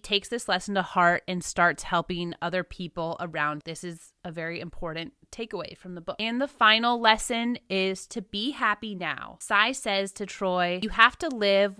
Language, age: English, 20-39